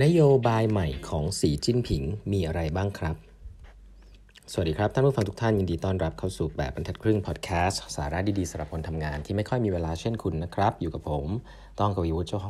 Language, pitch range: Thai, 85-120 Hz